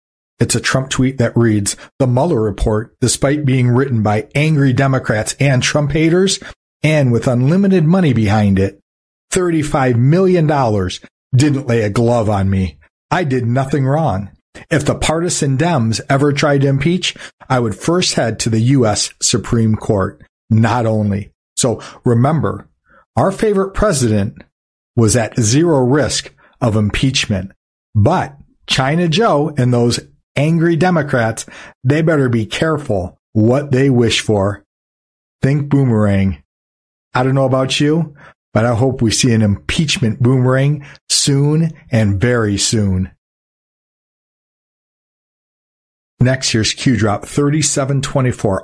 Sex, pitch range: male, 110-145 Hz